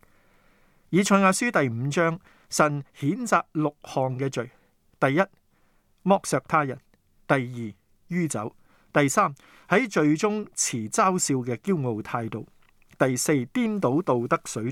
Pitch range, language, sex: 125-180 Hz, Chinese, male